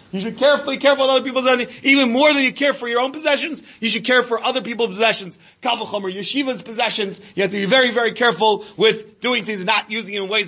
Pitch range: 200-265 Hz